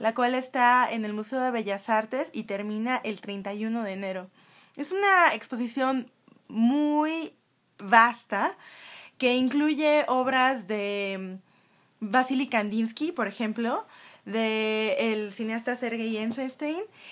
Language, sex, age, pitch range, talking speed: Spanish, female, 20-39, 215-260 Hz, 115 wpm